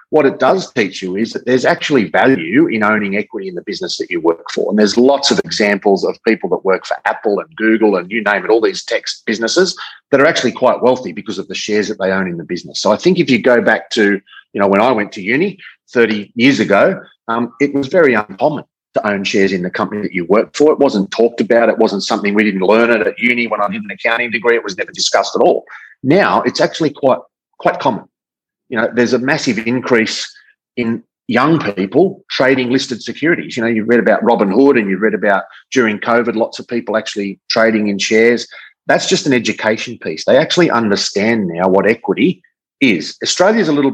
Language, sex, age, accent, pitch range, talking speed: English, male, 30-49, Australian, 105-125 Hz, 230 wpm